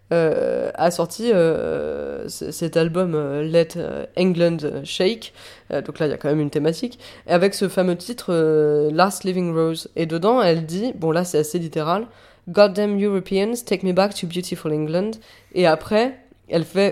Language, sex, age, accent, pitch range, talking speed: French, female, 20-39, French, 165-195 Hz, 175 wpm